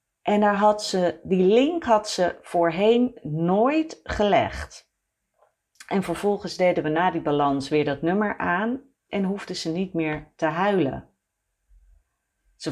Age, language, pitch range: 40-59, Dutch, 145-195 Hz